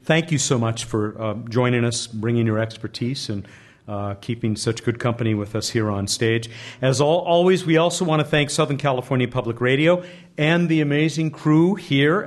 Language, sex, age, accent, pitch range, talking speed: English, male, 50-69, American, 115-165 Hz, 185 wpm